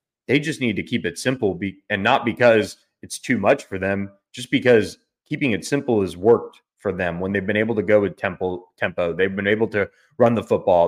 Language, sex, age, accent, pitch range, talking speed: English, male, 30-49, American, 100-120 Hz, 220 wpm